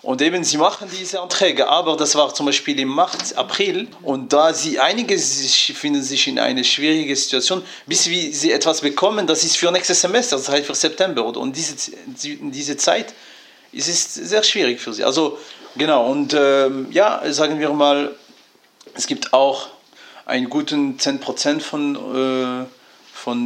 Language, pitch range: German, 130-195 Hz